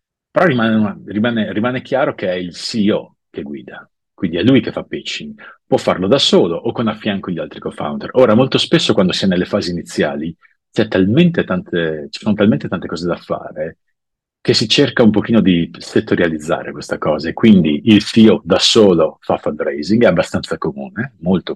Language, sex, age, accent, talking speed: English, male, 40-59, Italian, 180 wpm